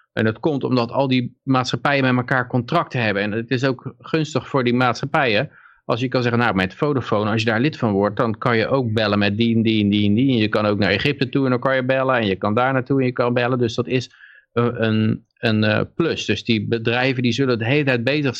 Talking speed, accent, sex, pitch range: 260 wpm, Dutch, male, 105-125 Hz